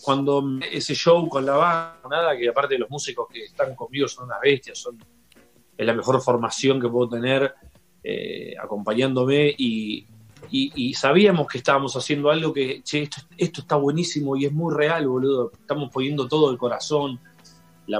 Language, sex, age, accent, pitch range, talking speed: Italian, male, 30-49, Argentinian, 125-165 Hz, 165 wpm